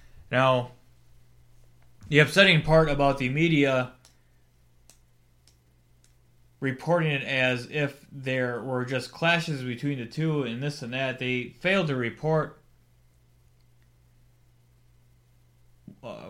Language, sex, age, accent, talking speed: English, male, 20-39, American, 100 wpm